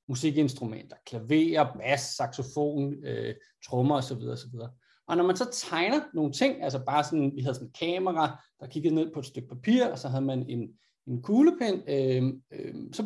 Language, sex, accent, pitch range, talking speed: Danish, male, native, 140-195 Hz, 190 wpm